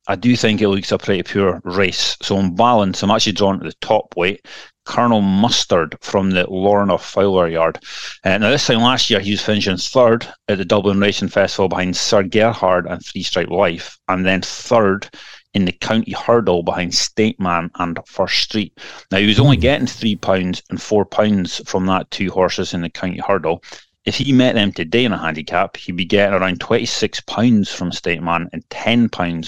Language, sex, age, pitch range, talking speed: English, male, 30-49, 95-110 Hz, 195 wpm